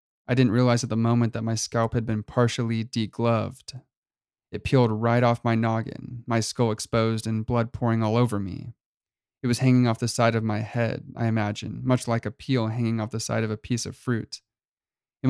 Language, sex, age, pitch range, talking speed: English, male, 30-49, 110-125 Hz, 210 wpm